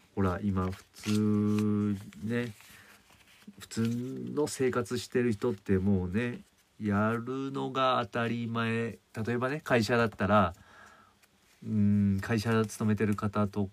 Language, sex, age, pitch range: Japanese, male, 40-59, 95-115 Hz